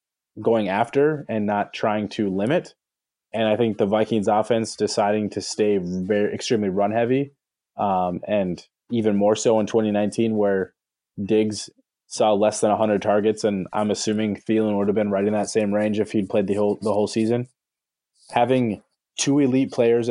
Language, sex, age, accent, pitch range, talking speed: English, male, 20-39, American, 105-115 Hz, 175 wpm